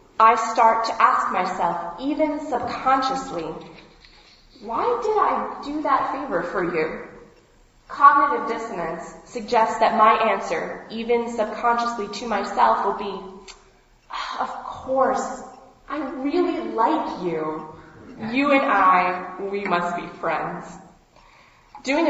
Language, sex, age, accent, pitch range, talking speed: English, female, 20-39, American, 185-250 Hz, 110 wpm